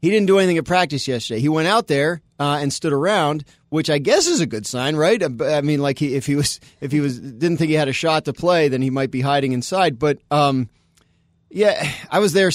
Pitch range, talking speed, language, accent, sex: 135-165 Hz, 260 wpm, English, American, male